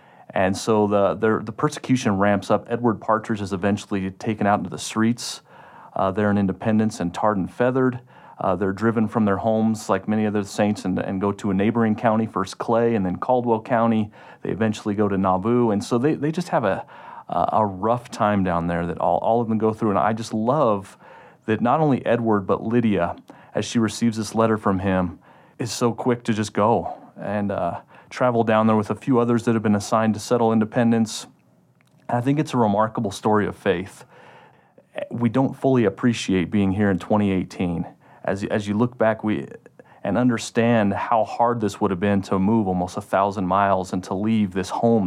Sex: male